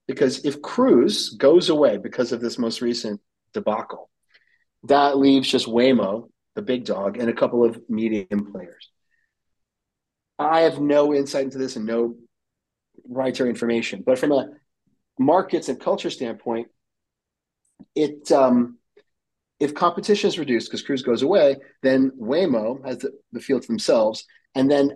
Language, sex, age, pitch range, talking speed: English, male, 40-59, 115-150 Hz, 145 wpm